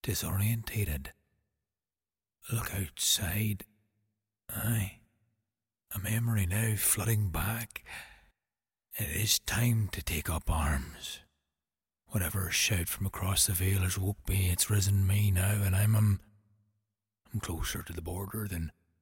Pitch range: 80-105 Hz